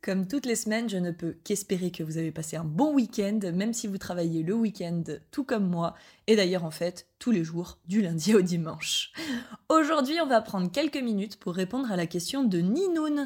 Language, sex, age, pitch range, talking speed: French, female, 20-39, 180-240 Hz, 215 wpm